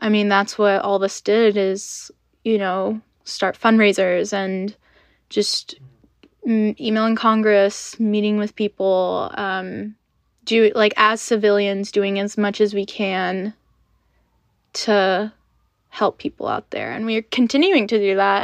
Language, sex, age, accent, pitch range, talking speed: English, female, 10-29, American, 200-225 Hz, 135 wpm